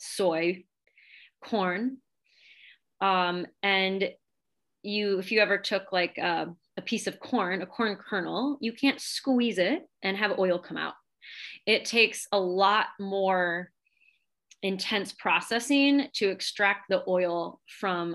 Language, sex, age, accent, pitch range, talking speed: English, female, 20-39, American, 180-220 Hz, 130 wpm